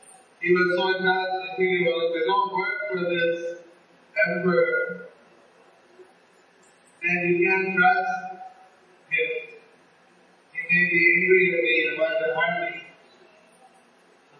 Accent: Indian